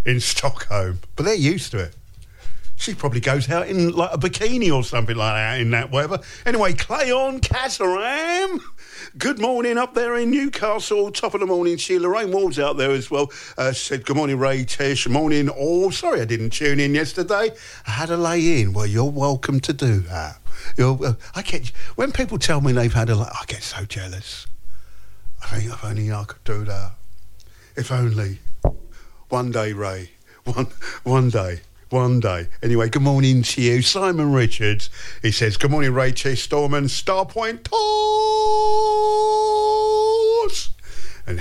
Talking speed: 170 wpm